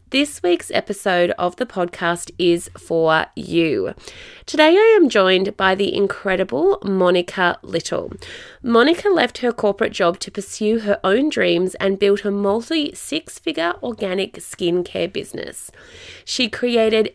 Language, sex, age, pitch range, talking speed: English, female, 20-39, 180-240 Hz, 135 wpm